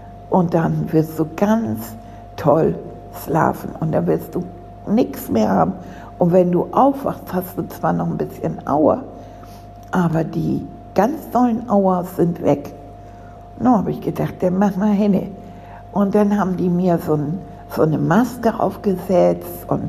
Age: 60-79